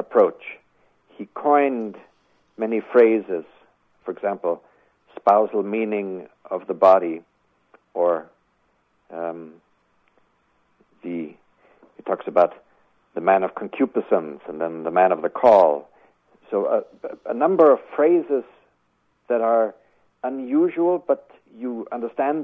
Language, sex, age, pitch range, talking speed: English, male, 60-79, 100-140 Hz, 110 wpm